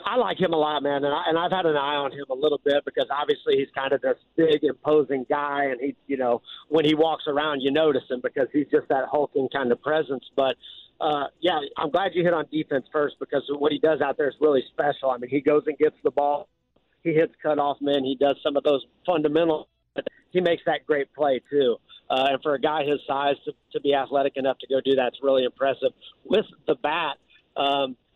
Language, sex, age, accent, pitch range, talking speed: English, male, 50-69, American, 140-160 Hz, 240 wpm